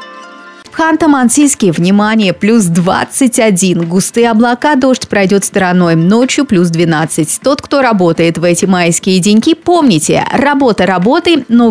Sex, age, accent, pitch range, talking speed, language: female, 30-49, native, 185-255 Hz, 120 wpm, Russian